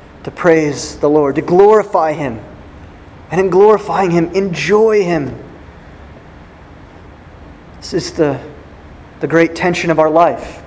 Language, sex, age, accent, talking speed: English, male, 30-49, American, 125 wpm